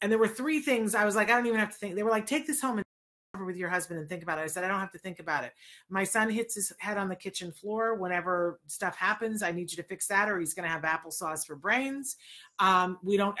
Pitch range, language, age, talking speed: 180-220 Hz, English, 40-59, 295 wpm